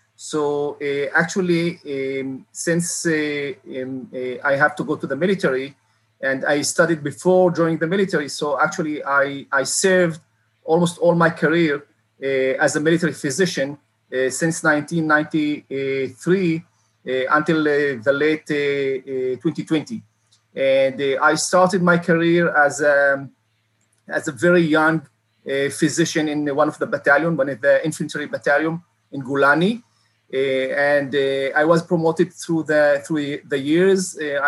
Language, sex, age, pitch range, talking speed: English, male, 40-59, 135-165 Hz, 145 wpm